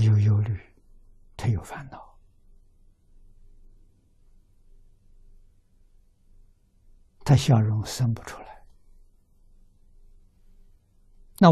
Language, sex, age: Chinese, male, 60-79